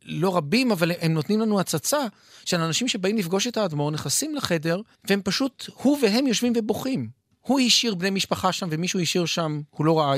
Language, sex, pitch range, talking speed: Hebrew, male, 145-210 Hz, 190 wpm